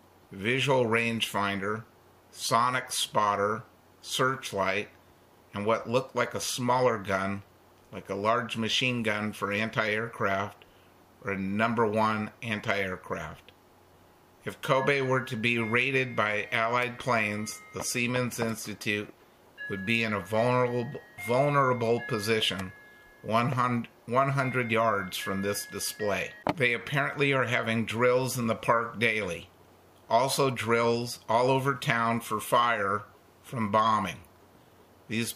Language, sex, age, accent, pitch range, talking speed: English, male, 50-69, American, 100-125 Hz, 115 wpm